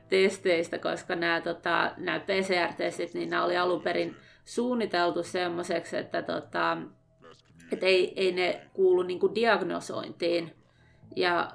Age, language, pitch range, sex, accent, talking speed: 30-49, Finnish, 175-205 Hz, female, native, 120 wpm